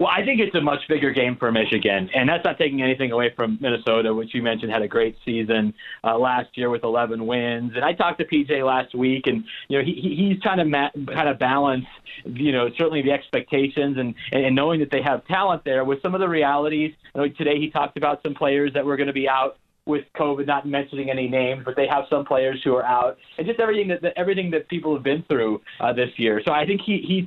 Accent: American